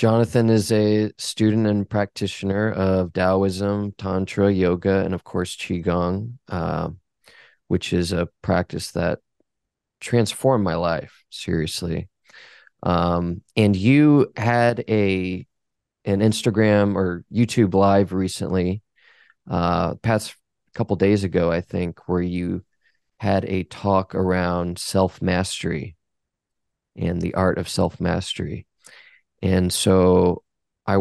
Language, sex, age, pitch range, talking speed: English, male, 20-39, 90-110 Hz, 110 wpm